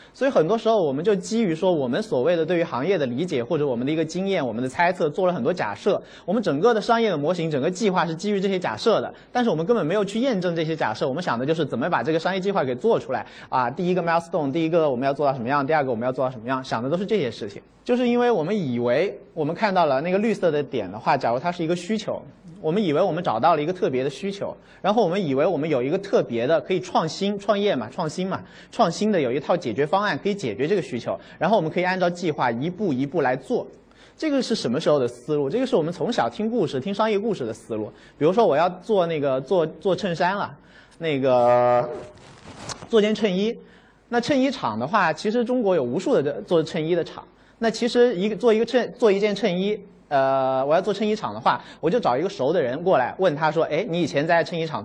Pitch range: 145-215 Hz